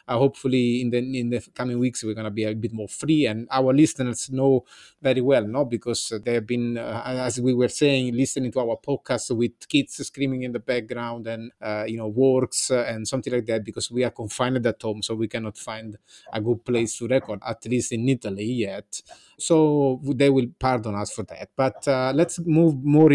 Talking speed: 210 wpm